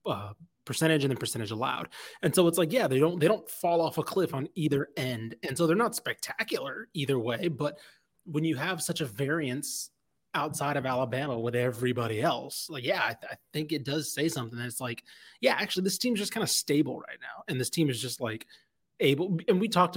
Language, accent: English, American